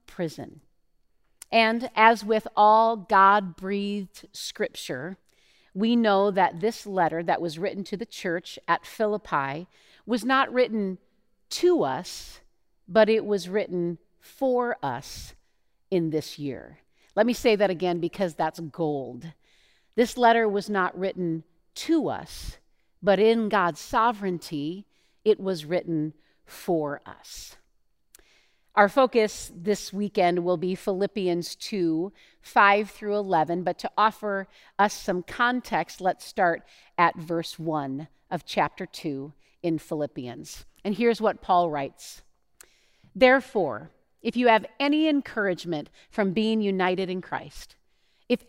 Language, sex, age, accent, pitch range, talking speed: English, female, 50-69, American, 175-225 Hz, 125 wpm